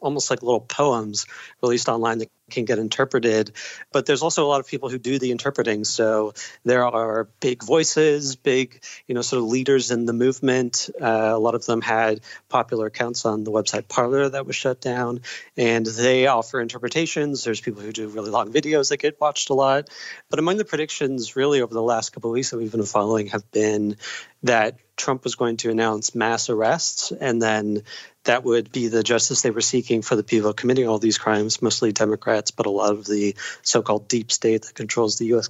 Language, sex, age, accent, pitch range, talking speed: English, male, 30-49, American, 110-130 Hz, 210 wpm